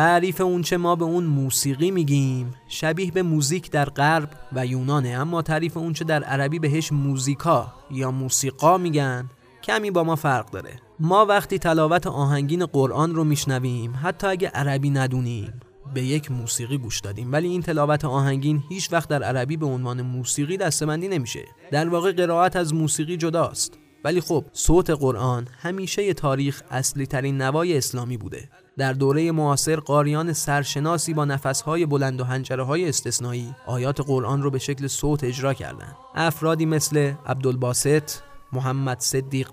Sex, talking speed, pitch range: male, 155 wpm, 130-160 Hz